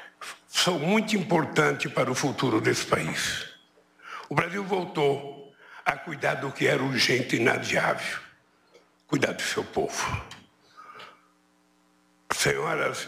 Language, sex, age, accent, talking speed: Portuguese, male, 60-79, Brazilian, 110 wpm